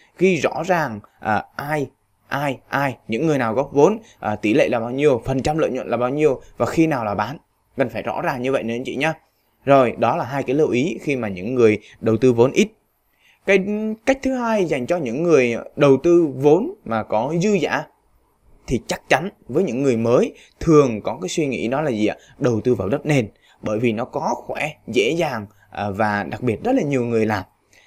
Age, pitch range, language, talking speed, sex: 20-39, 115-170 Hz, Vietnamese, 230 wpm, male